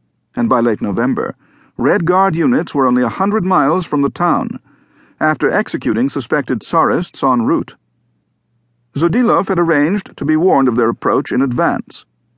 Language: English